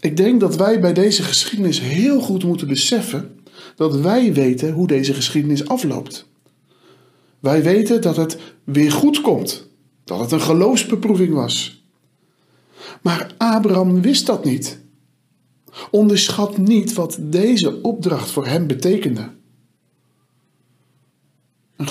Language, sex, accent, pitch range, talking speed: Dutch, male, Dutch, 150-220 Hz, 120 wpm